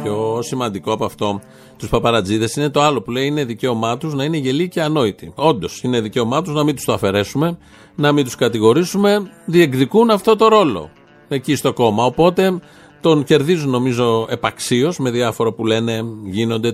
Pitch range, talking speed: 115-160 Hz, 175 wpm